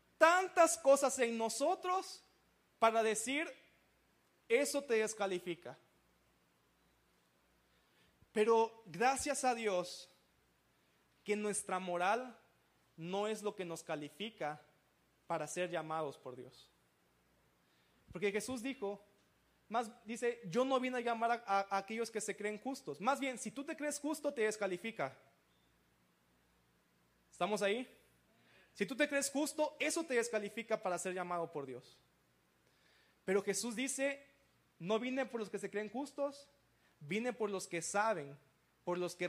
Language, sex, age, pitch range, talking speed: Spanish, male, 30-49, 175-240 Hz, 130 wpm